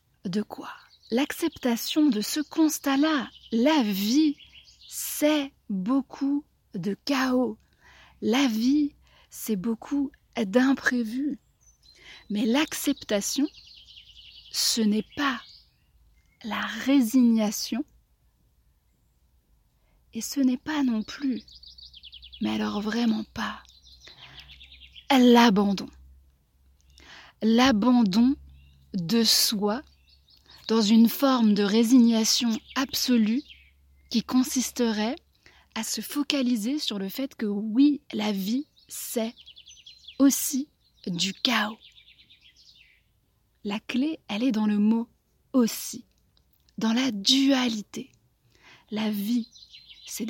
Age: 30-49